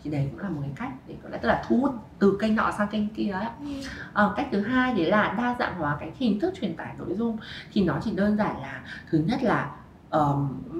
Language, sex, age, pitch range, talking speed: Vietnamese, female, 20-39, 155-230 Hz, 250 wpm